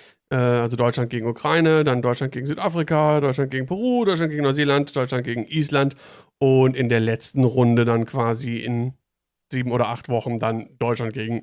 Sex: male